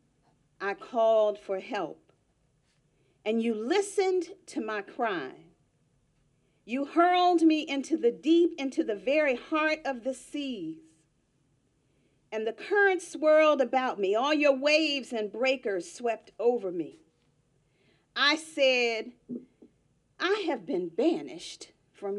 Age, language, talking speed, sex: 40-59, English, 120 wpm, female